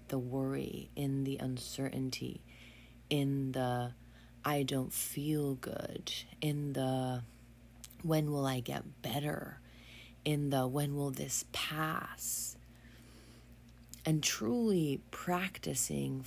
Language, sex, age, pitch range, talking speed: English, female, 30-49, 120-155 Hz, 100 wpm